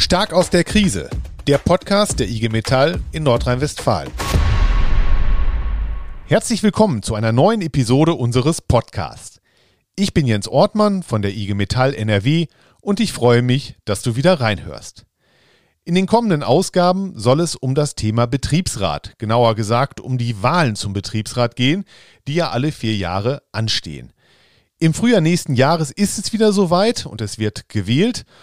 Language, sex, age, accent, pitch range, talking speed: German, male, 40-59, German, 115-170 Hz, 150 wpm